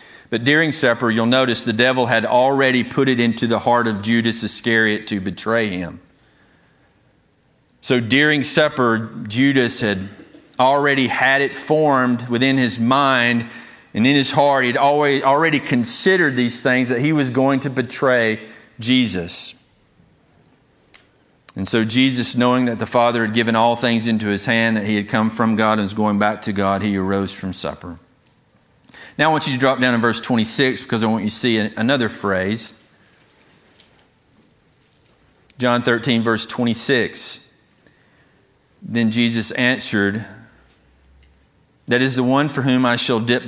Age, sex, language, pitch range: 40-59, male, English, 110-130 Hz